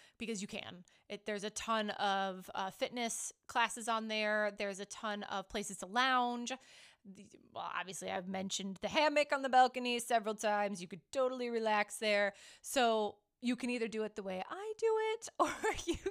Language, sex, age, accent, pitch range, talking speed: English, female, 20-39, American, 210-255 Hz, 180 wpm